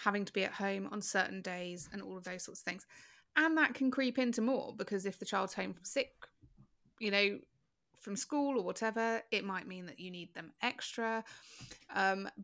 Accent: British